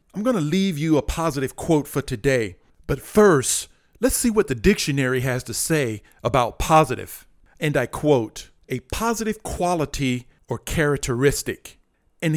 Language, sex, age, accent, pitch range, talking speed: English, male, 40-59, American, 125-165 Hz, 150 wpm